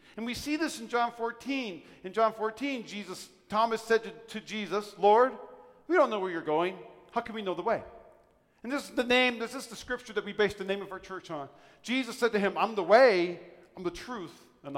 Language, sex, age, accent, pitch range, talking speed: English, male, 40-59, American, 160-225 Hz, 235 wpm